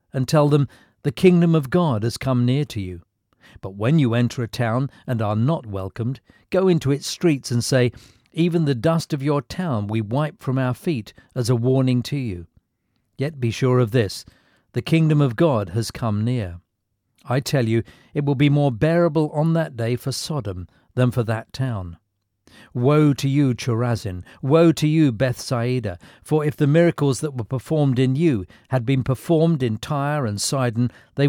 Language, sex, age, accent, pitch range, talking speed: English, male, 50-69, British, 115-145 Hz, 190 wpm